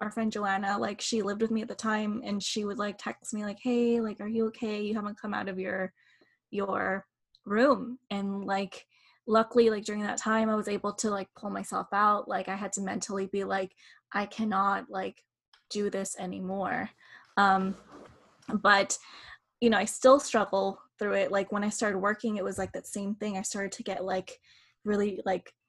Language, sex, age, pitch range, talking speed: English, female, 10-29, 195-230 Hz, 200 wpm